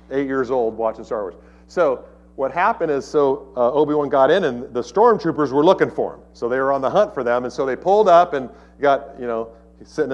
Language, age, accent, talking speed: English, 50-69, American, 235 wpm